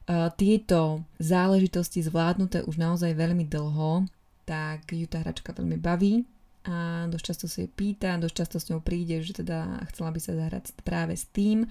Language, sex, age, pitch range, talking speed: Slovak, female, 20-39, 160-180 Hz, 170 wpm